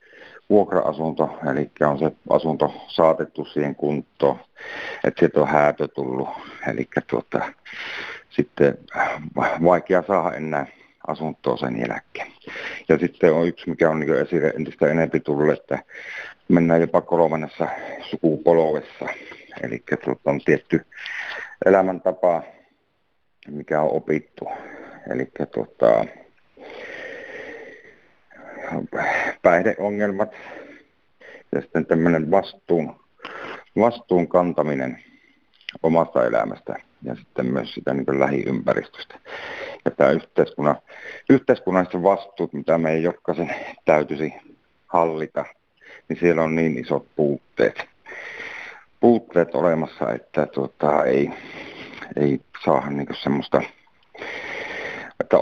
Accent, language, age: native, Finnish, 60-79